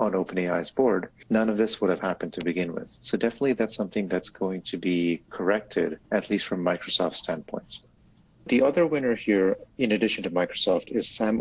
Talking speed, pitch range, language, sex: 190 wpm, 90-110 Hz, English, male